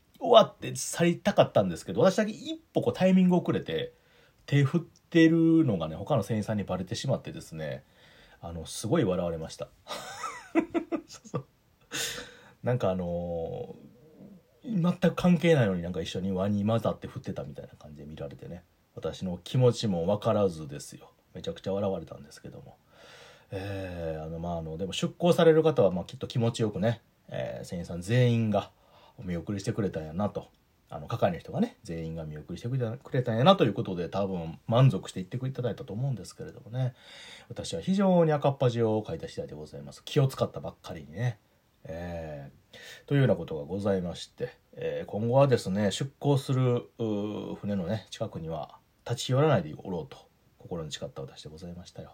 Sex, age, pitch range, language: male, 40-59, 90-155 Hz, Japanese